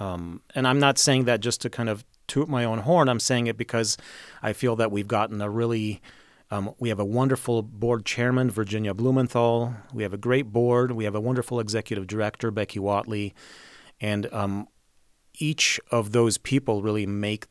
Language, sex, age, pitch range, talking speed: English, male, 40-59, 105-125 Hz, 190 wpm